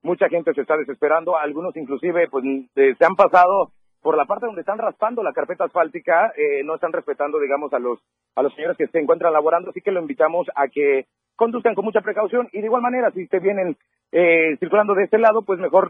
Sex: male